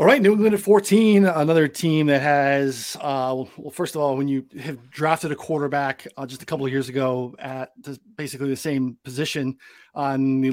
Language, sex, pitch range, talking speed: English, male, 135-165 Hz, 200 wpm